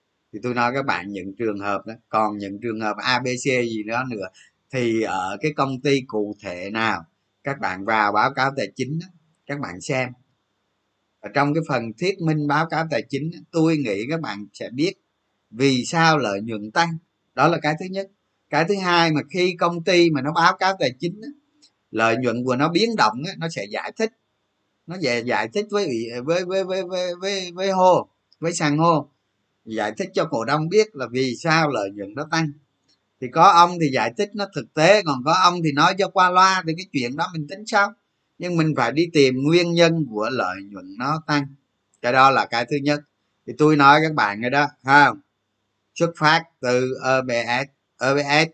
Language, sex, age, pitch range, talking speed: Vietnamese, male, 20-39, 115-165 Hz, 205 wpm